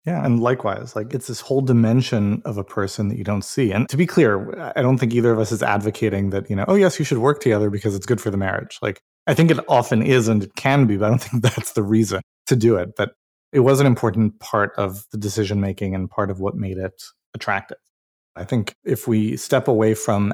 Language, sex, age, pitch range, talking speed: English, male, 30-49, 95-120 Hz, 250 wpm